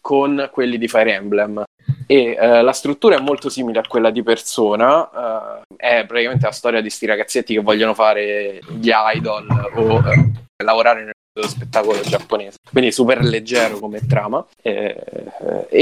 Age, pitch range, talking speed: 20-39, 110-125 Hz, 160 wpm